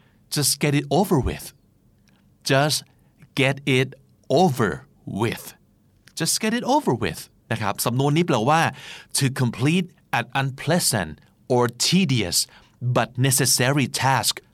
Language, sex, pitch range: Thai, male, 110-140 Hz